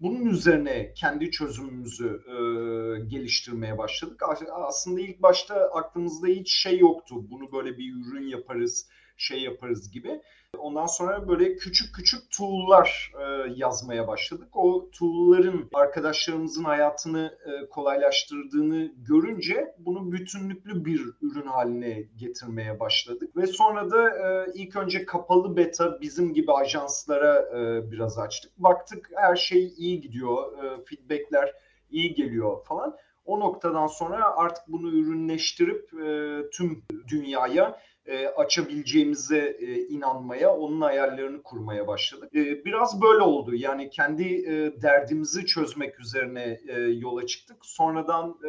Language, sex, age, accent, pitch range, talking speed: Turkish, male, 40-59, native, 135-225 Hz, 110 wpm